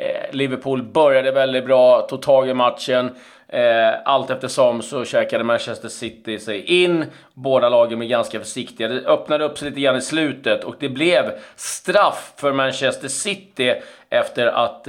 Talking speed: 155 wpm